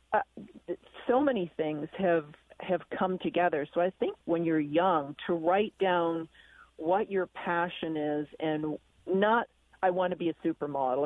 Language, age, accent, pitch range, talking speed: English, 40-59, American, 155-185 Hz, 155 wpm